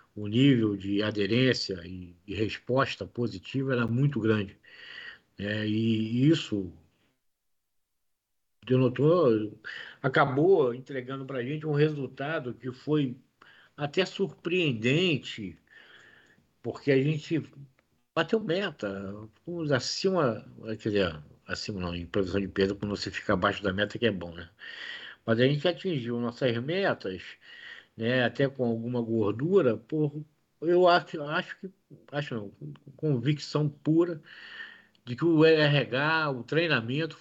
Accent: Brazilian